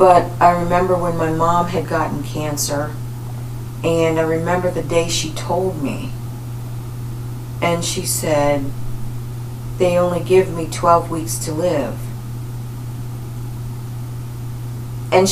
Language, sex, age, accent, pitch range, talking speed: English, female, 40-59, American, 120-175 Hz, 115 wpm